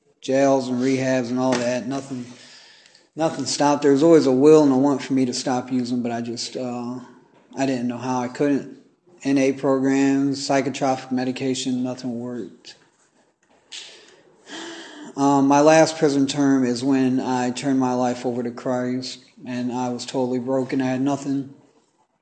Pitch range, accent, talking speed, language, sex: 125-135 Hz, American, 160 wpm, English, male